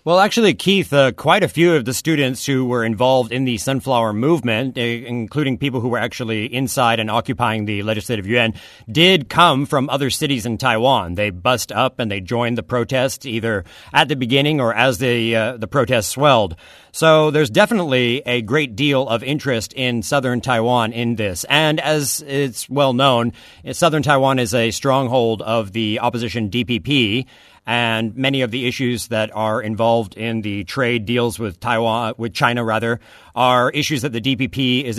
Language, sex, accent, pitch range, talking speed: English, male, American, 115-145 Hz, 185 wpm